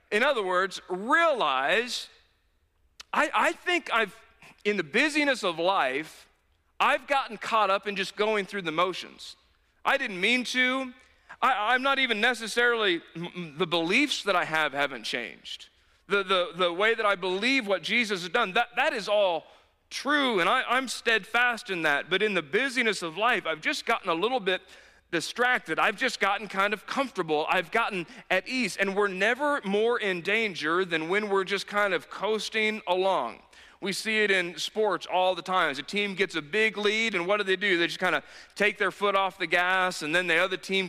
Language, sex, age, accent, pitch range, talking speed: English, male, 40-59, American, 180-235 Hz, 195 wpm